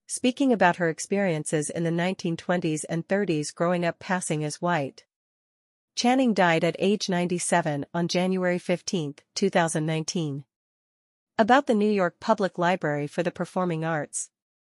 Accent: American